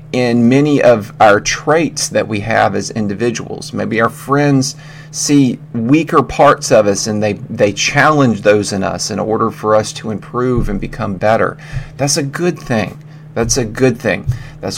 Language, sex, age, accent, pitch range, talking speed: English, male, 40-59, American, 110-145 Hz, 175 wpm